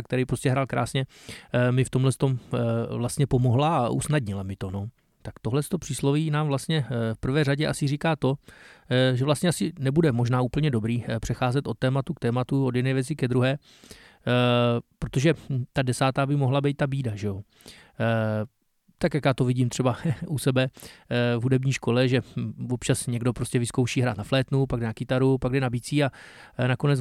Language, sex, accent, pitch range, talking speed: Czech, male, native, 120-140 Hz, 185 wpm